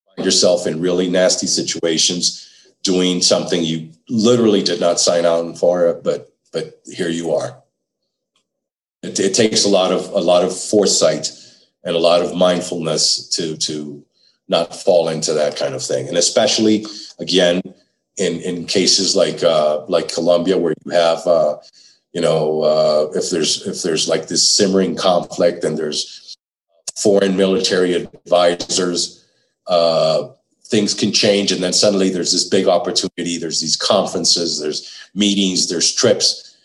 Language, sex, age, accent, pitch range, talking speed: English, male, 40-59, American, 85-100 Hz, 150 wpm